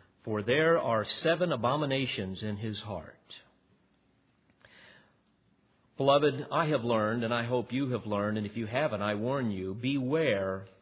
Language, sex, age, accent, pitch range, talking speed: English, male, 50-69, American, 110-140 Hz, 145 wpm